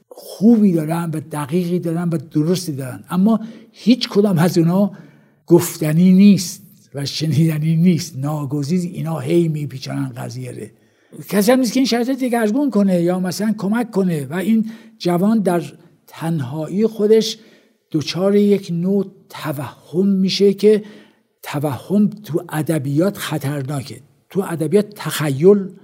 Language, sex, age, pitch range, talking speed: Persian, male, 60-79, 150-200 Hz, 120 wpm